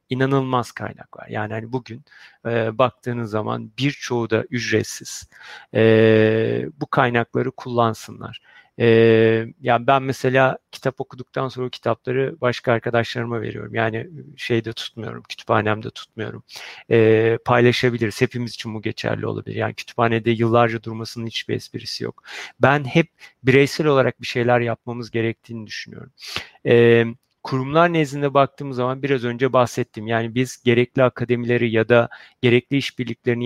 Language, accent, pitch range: Turkish, native, 115-130 Hz